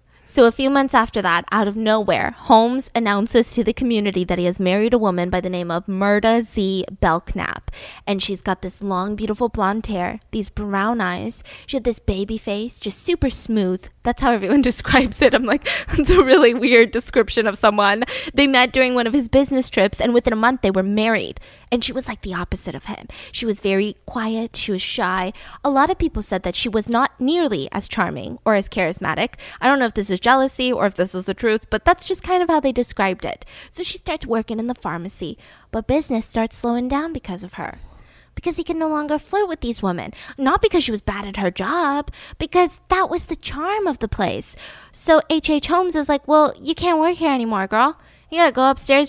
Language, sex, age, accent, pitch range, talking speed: English, female, 10-29, American, 205-280 Hz, 225 wpm